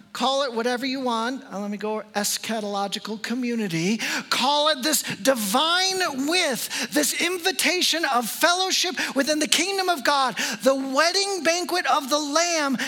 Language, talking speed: English, 140 wpm